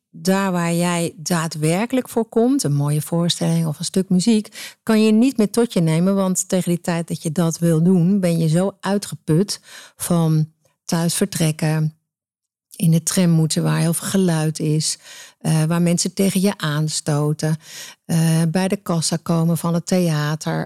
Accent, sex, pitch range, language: Dutch, female, 160-190 Hz, Dutch